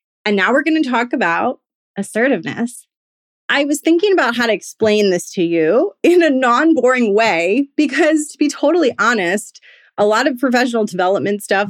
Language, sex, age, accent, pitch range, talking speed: English, female, 30-49, American, 190-260 Hz, 170 wpm